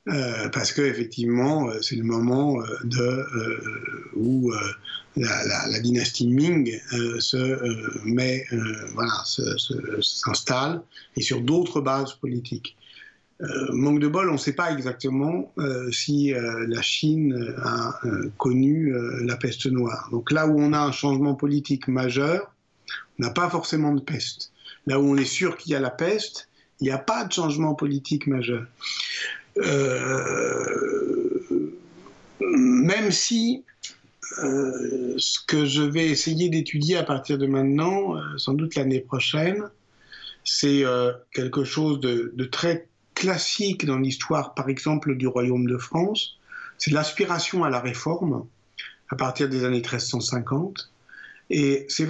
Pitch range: 125-165 Hz